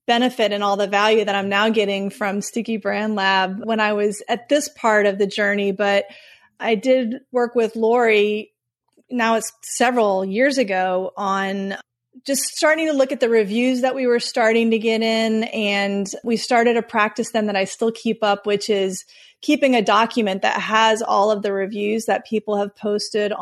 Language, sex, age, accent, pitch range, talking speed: English, female, 30-49, American, 200-230 Hz, 190 wpm